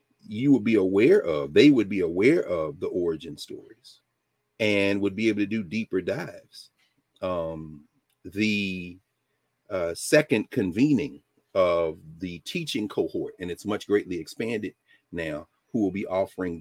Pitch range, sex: 85-140 Hz, male